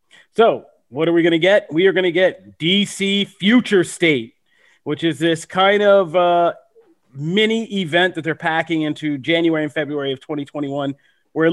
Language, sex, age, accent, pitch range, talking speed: English, male, 30-49, American, 130-170 Hz, 175 wpm